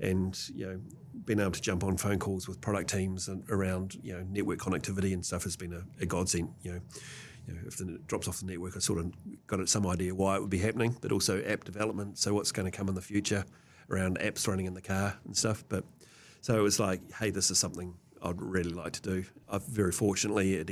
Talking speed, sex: 245 wpm, male